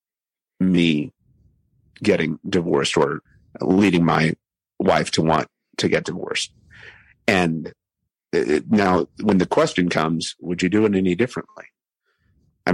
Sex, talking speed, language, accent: male, 120 wpm, English, American